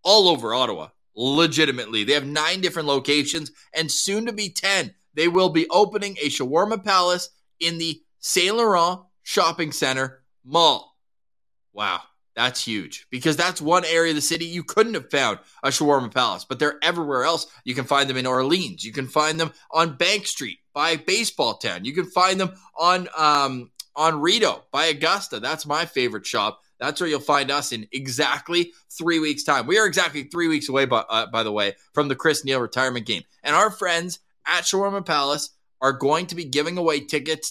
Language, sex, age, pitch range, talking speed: English, male, 20-39, 135-175 Hz, 190 wpm